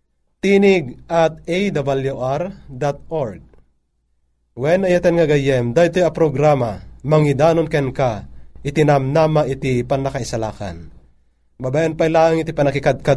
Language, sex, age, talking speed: Filipino, male, 30-49, 90 wpm